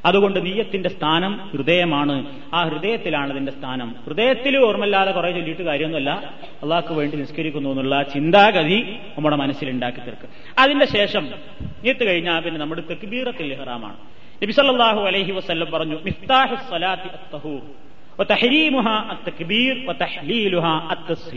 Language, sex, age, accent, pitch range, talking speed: Malayalam, male, 30-49, native, 150-200 Hz, 85 wpm